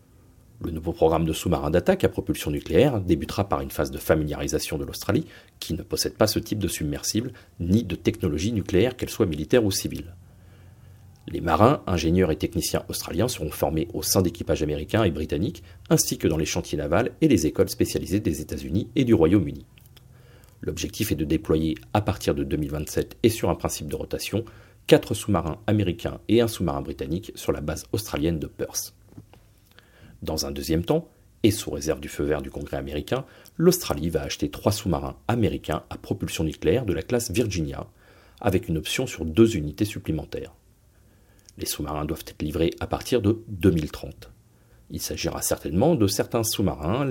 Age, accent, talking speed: 40-59, French, 175 wpm